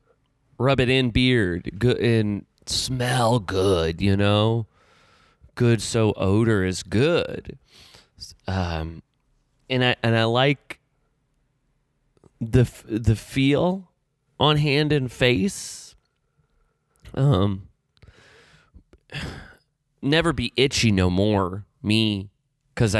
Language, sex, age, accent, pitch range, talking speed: English, male, 30-49, American, 100-140 Hz, 90 wpm